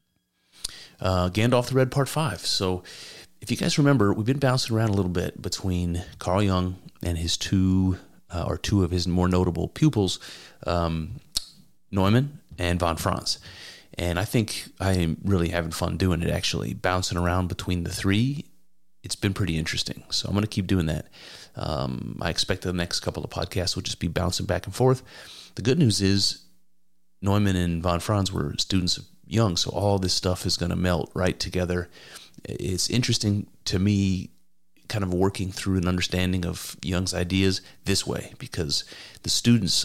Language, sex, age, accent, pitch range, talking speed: English, male, 30-49, American, 85-100 Hz, 175 wpm